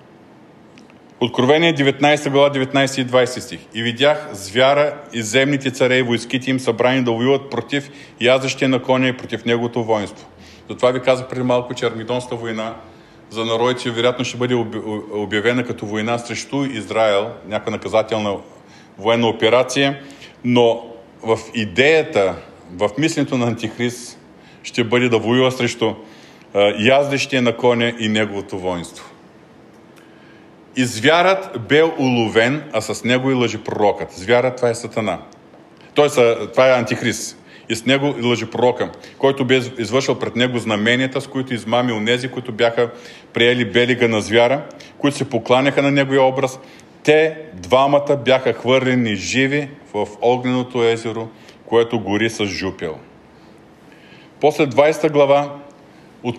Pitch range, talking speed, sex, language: 115-135 Hz, 135 wpm, male, Bulgarian